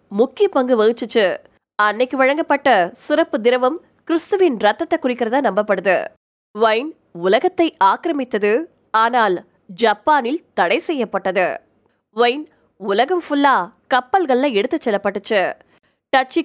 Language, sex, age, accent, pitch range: Tamil, female, 20-39, native, 240-325 Hz